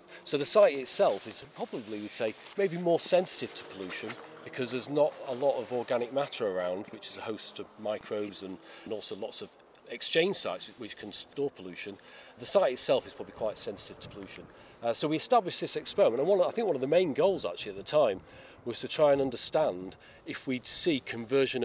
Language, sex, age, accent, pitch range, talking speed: English, male, 40-59, British, 115-155 Hz, 205 wpm